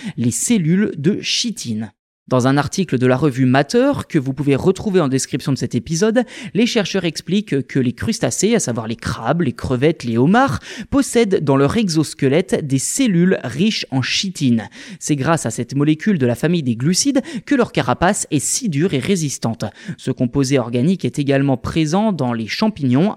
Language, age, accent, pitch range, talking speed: French, 20-39, French, 135-205 Hz, 180 wpm